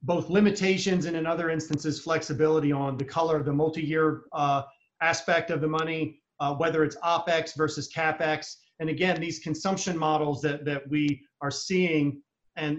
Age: 40-59